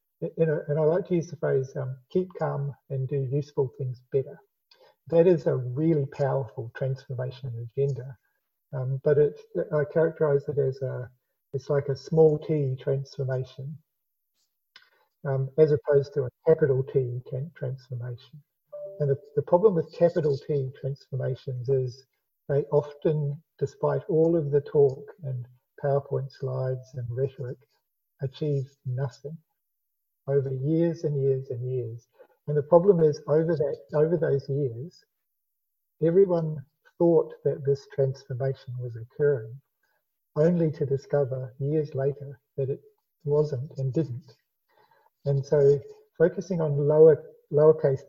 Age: 50-69